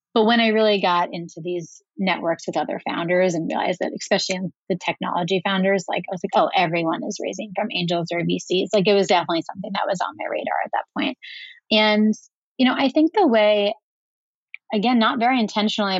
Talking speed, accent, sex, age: 205 wpm, American, female, 30-49